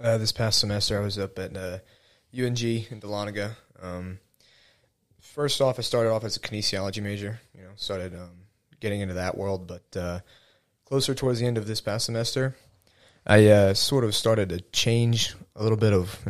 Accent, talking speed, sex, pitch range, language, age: American, 190 wpm, male, 95-115 Hz, English, 20-39